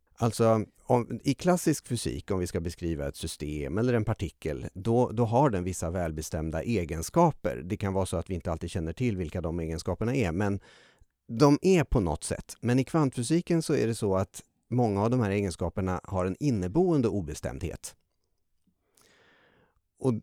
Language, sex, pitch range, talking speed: Swedish, male, 90-130 Hz, 170 wpm